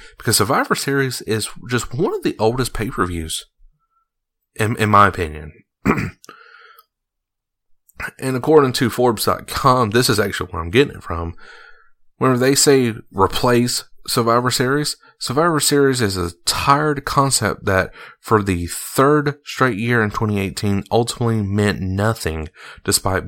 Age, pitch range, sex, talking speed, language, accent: 30-49, 95-125 Hz, male, 130 wpm, English, American